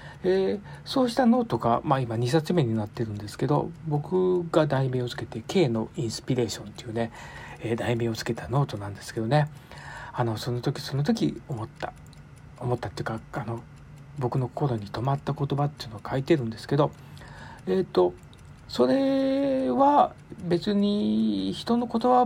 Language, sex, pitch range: Japanese, male, 115-170 Hz